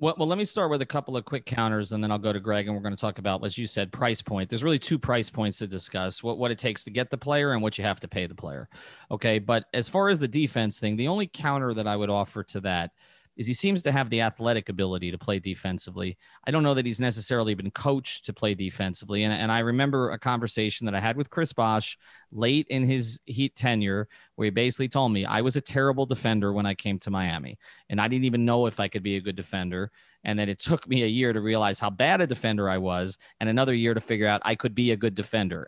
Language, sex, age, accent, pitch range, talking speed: English, male, 30-49, American, 105-135 Hz, 265 wpm